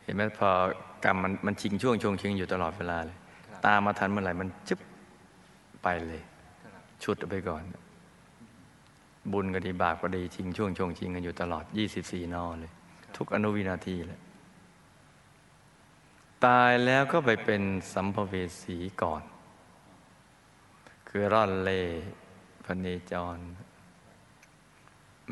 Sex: male